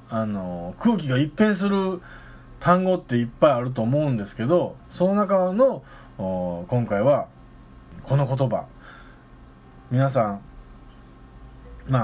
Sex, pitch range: male, 100-170 Hz